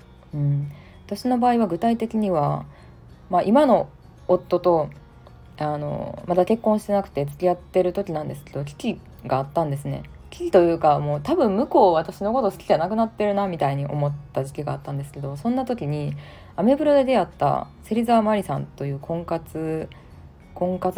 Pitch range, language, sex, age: 140-215 Hz, Japanese, female, 20-39